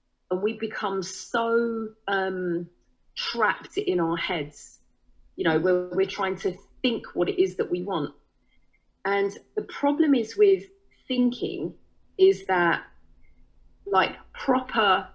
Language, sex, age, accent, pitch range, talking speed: English, female, 40-59, British, 170-255 Hz, 125 wpm